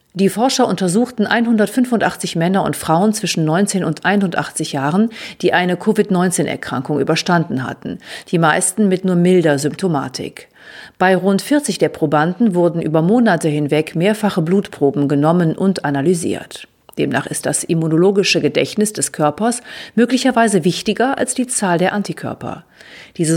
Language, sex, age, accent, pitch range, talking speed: German, female, 50-69, German, 160-210 Hz, 135 wpm